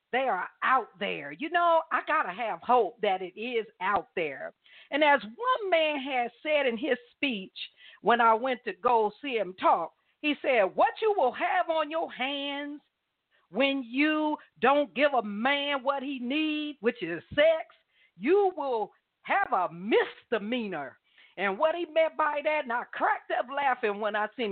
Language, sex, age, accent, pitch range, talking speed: English, female, 50-69, American, 225-315 Hz, 180 wpm